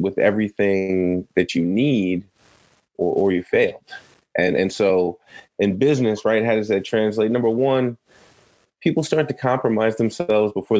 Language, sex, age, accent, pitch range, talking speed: English, male, 20-39, American, 100-120 Hz, 150 wpm